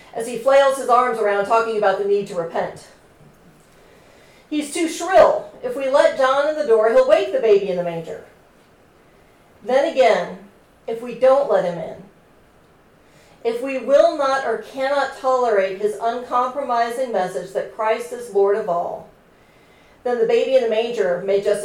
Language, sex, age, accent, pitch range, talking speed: English, female, 40-59, American, 210-300 Hz, 170 wpm